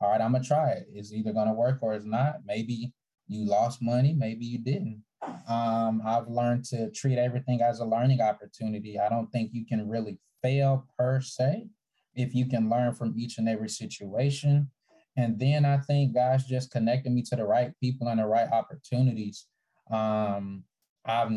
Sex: male